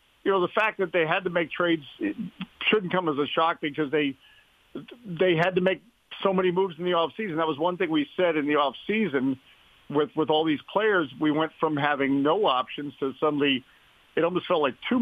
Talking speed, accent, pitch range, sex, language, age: 215 wpm, American, 140-175 Hz, male, English, 50-69